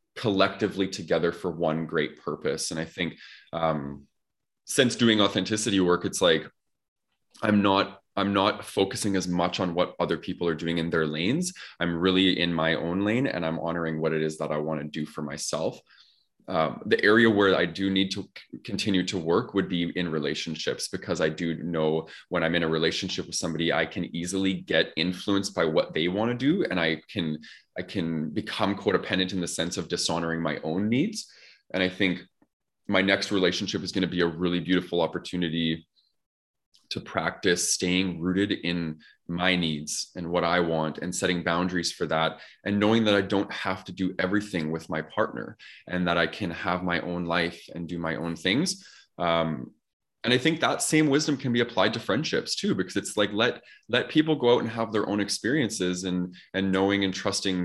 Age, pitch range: 20-39, 85-100 Hz